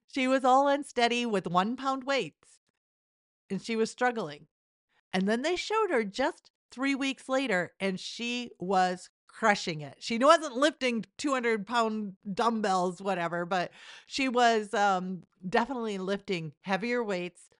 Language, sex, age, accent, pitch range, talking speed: English, female, 50-69, American, 170-235 Hz, 140 wpm